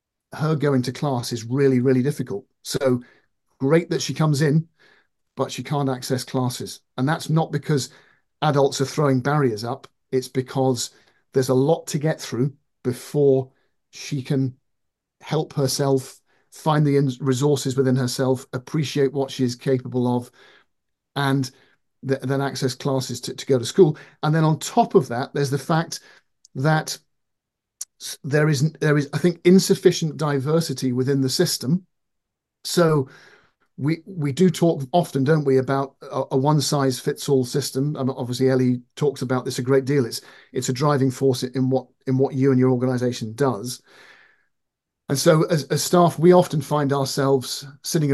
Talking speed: 165 wpm